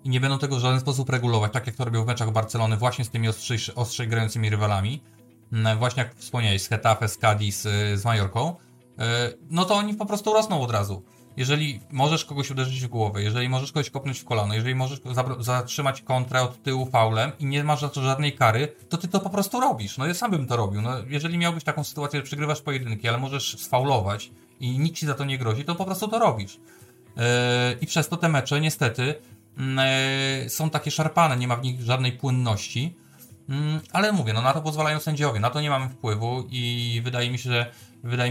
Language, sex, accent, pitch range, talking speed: Polish, male, native, 110-135 Hz, 210 wpm